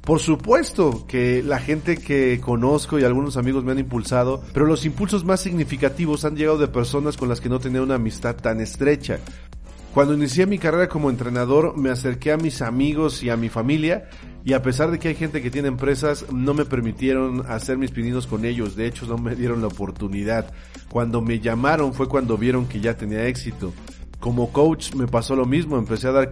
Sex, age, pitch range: male, 40-59, 125-150 Hz